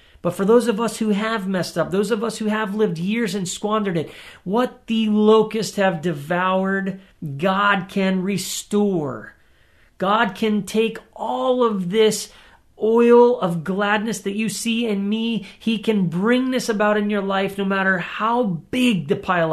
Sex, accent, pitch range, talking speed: male, American, 185-235 Hz, 170 wpm